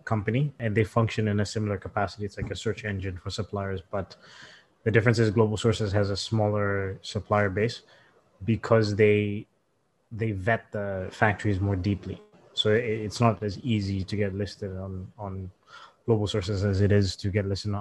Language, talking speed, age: English, 175 wpm, 20-39